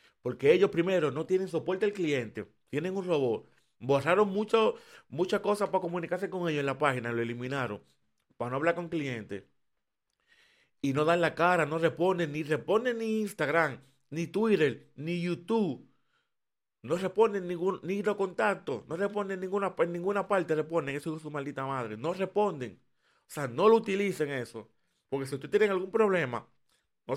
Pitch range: 125-175 Hz